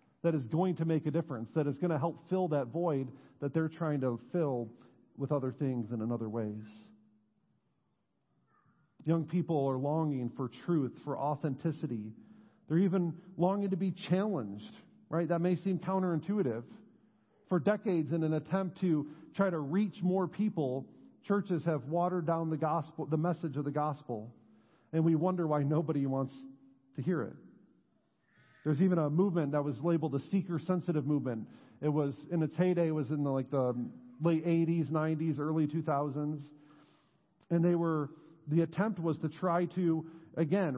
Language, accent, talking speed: English, American, 165 wpm